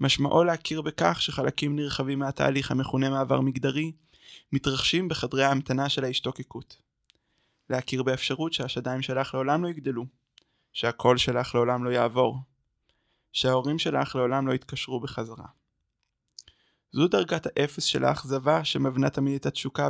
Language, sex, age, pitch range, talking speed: Hebrew, male, 20-39, 130-145 Hz, 125 wpm